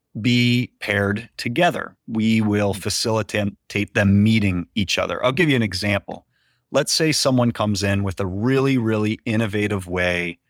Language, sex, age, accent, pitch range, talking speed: English, male, 30-49, American, 100-120 Hz, 150 wpm